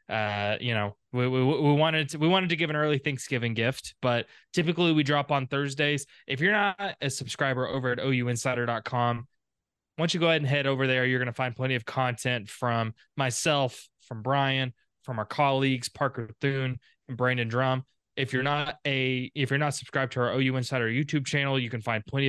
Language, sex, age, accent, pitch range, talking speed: English, male, 20-39, American, 125-145 Hz, 200 wpm